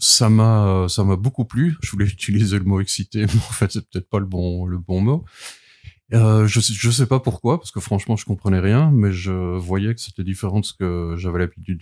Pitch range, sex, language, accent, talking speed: 95-115 Hz, male, French, French, 240 wpm